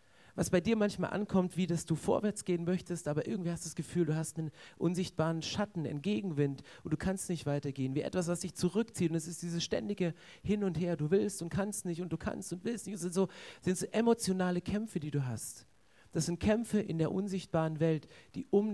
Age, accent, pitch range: 40-59, German, 155-190 Hz